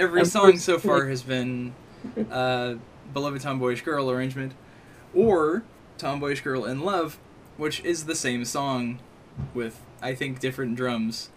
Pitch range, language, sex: 125-150 Hz, English, male